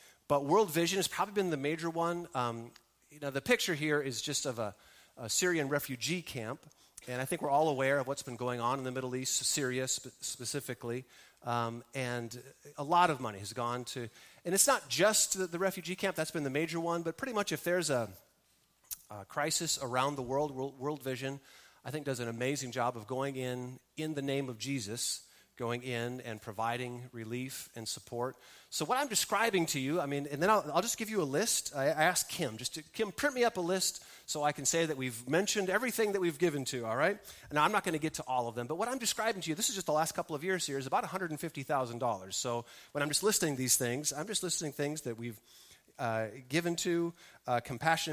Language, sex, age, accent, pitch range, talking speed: English, male, 30-49, American, 125-170 Hz, 230 wpm